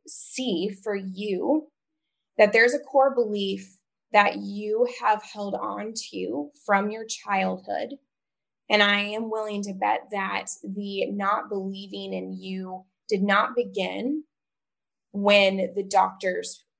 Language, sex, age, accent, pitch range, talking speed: English, female, 10-29, American, 190-220 Hz, 125 wpm